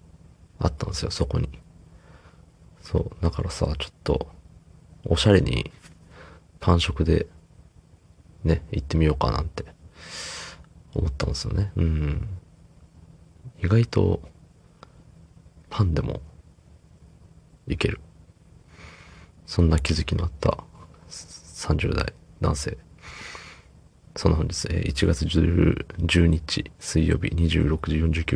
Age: 40-59